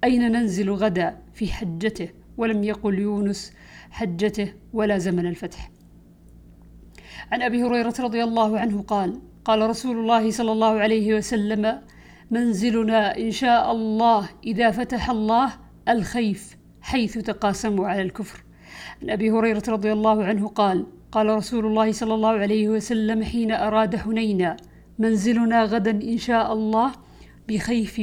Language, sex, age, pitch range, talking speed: Arabic, female, 50-69, 200-225 Hz, 130 wpm